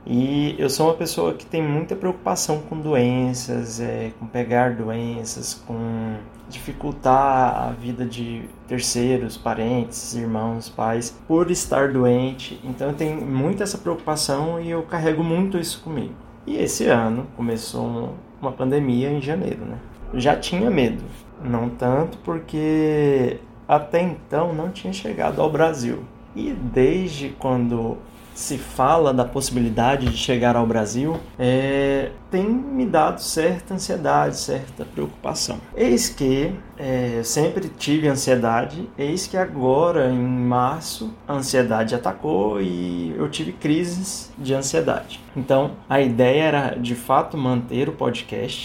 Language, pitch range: Portuguese, 120-150 Hz